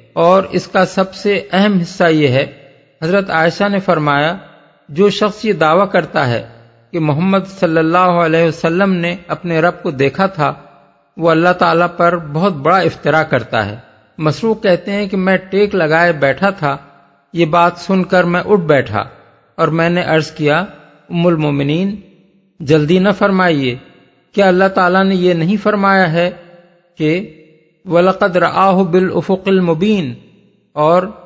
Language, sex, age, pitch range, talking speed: Urdu, male, 50-69, 155-190 Hz, 155 wpm